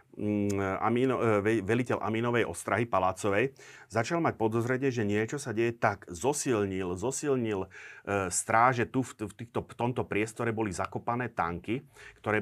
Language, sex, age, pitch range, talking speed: Slovak, male, 40-59, 100-120 Hz, 140 wpm